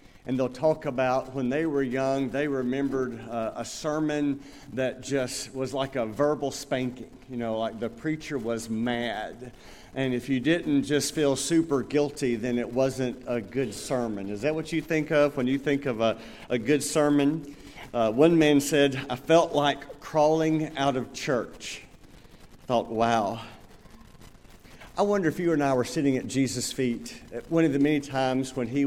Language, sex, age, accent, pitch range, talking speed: English, male, 50-69, American, 125-155 Hz, 180 wpm